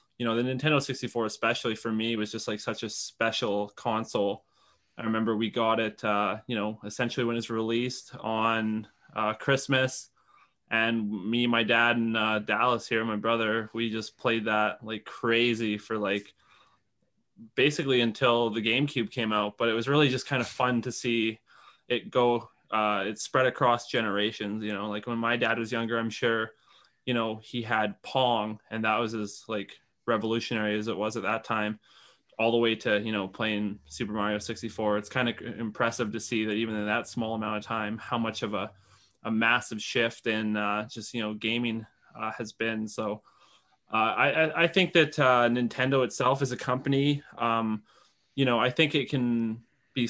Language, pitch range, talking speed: English, 110-125 Hz, 190 wpm